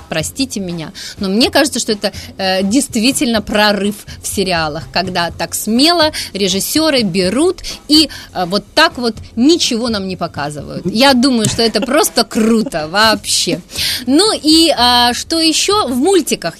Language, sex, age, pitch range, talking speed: Russian, female, 30-49, 195-250 Hz, 145 wpm